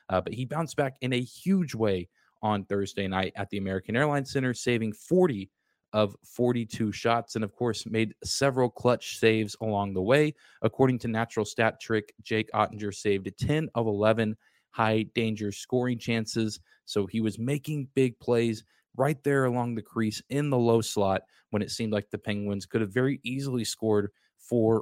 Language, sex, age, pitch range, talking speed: English, male, 20-39, 105-125 Hz, 180 wpm